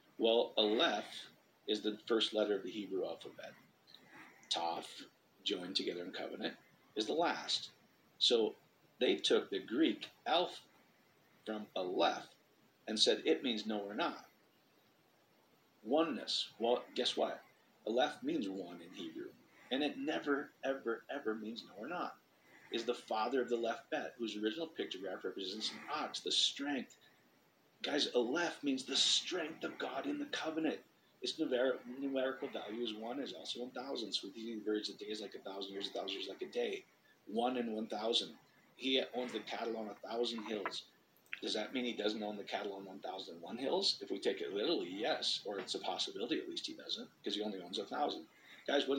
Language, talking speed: English, 185 wpm